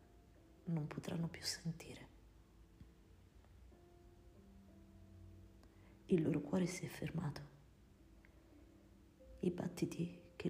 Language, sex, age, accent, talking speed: Italian, female, 50-69, native, 75 wpm